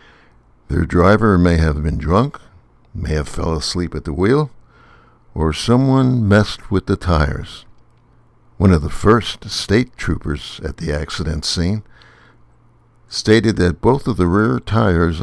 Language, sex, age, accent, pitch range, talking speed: English, male, 60-79, American, 80-110 Hz, 140 wpm